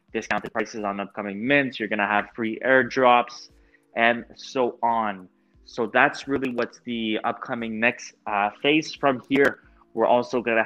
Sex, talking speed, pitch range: male, 150 wpm, 110-130 Hz